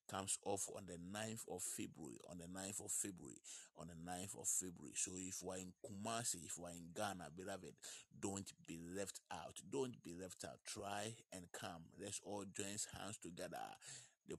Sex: male